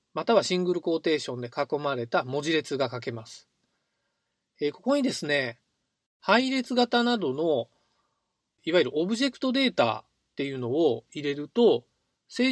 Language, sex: Japanese, male